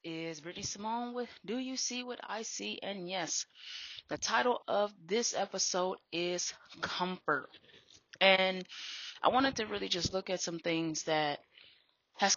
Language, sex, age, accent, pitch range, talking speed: English, female, 20-39, American, 170-210 Hz, 150 wpm